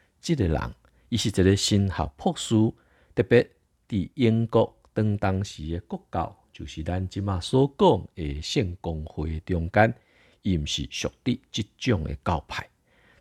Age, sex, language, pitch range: 50-69, male, Chinese, 80-110 Hz